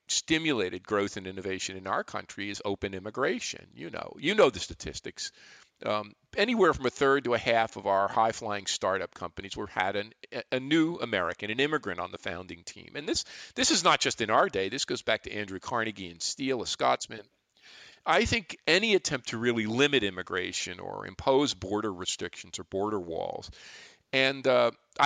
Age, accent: 50-69, American